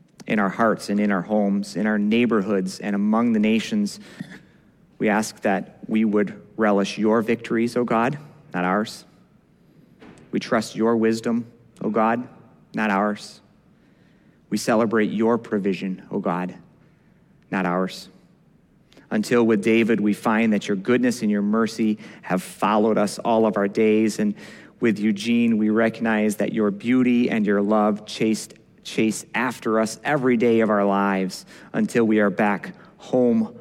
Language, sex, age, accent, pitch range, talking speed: English, male, 40-59, American, 100-115 Hz, 155 wpm